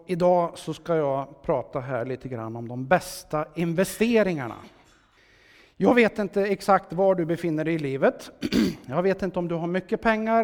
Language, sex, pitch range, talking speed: Swedish, male, 155-210 Hz, 170 wpm